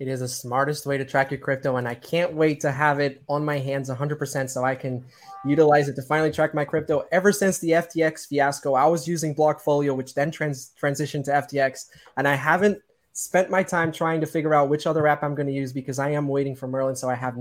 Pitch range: 140-165 Hz